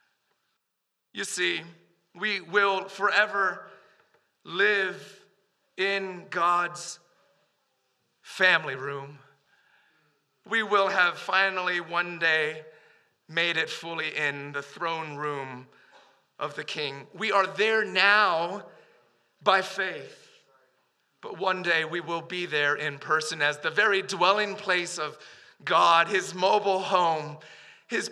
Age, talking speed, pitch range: 40-59, 110 wpm, 165-205 Hz